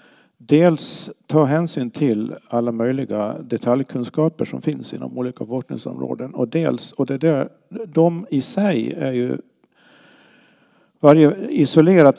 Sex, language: male, Swedish